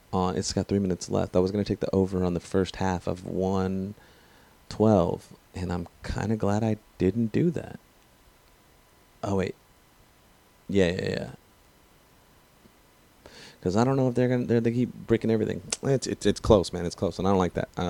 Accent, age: American, 30-49